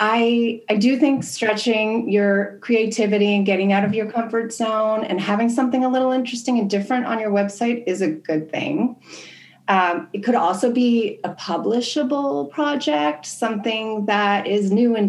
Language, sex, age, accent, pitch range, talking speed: English, female, 30-49, American, 180-230 Hz, 165 wpm